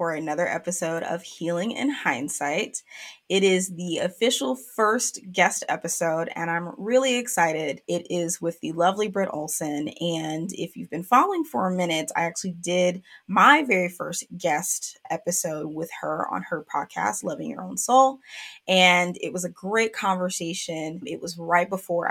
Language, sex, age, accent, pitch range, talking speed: English, female, 20-39, American, 165-200 Hz, 165 wpm